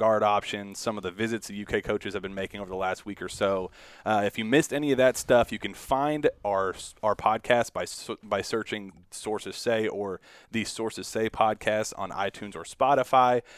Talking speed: 205 wpm